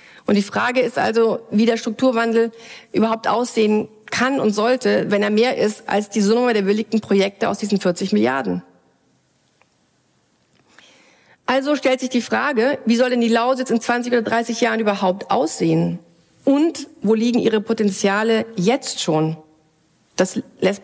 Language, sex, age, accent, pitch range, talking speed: German, female, 40-59, German, 200-240 Hz, 155 wpm